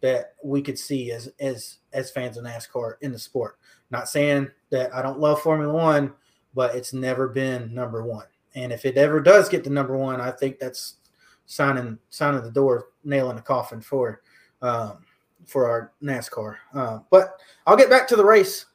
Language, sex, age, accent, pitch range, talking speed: English, male, 20-39, American, 130-160 Hz, 190 wpm